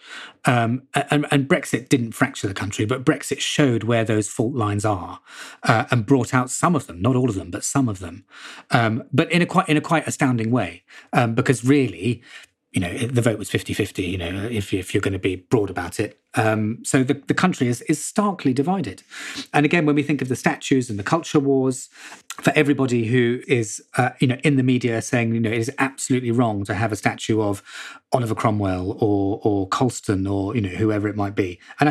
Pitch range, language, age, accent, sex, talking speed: 105-140 Hz, English, 30-49, British, male, 220 wpm